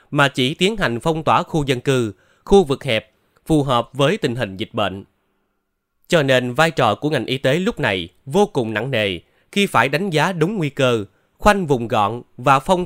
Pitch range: 115-160 Hz